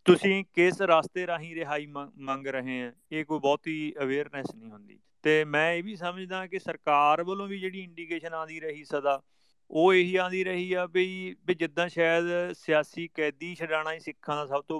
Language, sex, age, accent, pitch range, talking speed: English, male, 30-49, Indian, 135-170 Hz, 185 wpm